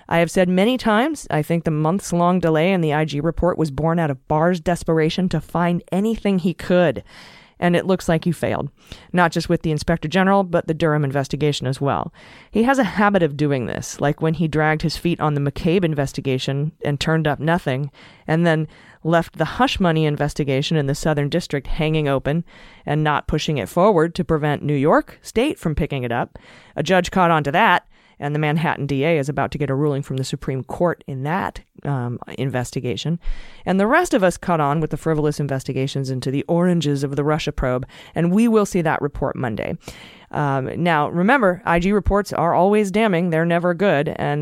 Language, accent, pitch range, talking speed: English, American, 145-180 Hz, 205 wpm